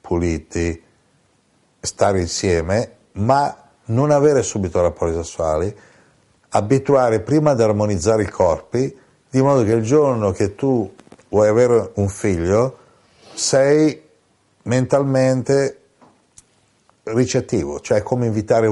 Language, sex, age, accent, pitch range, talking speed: Italian, male, 60-79, native, 100-130 Hz, 105 wpm